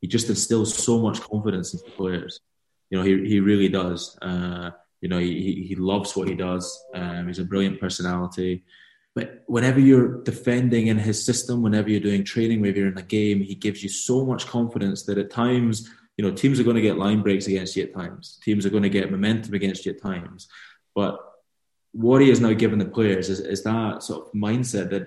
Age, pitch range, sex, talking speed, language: 20-39, 95-110 Hz, male, 220 wpm, English